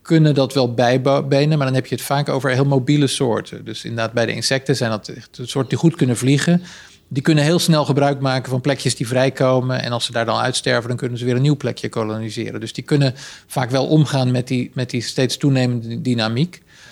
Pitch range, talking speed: 115-135 Hz, 220 wpm